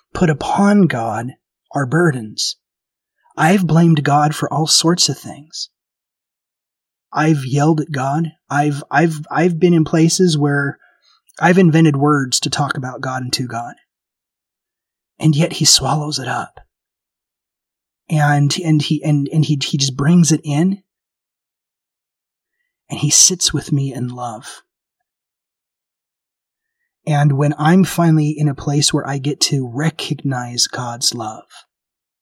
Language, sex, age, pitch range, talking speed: English, male, 30-49, 135-160 Hz, 135 wpm